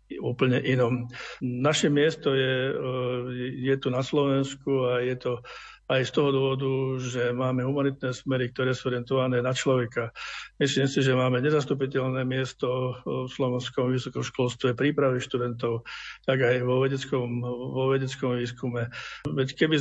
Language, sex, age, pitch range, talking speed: Slovak, male, 60-79, 125-140 Hz, 135 wpm